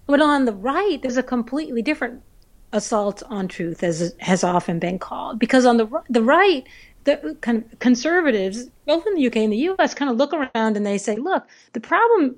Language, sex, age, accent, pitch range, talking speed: English, female, 40-59, American, 200-280 Hz, 195 wpm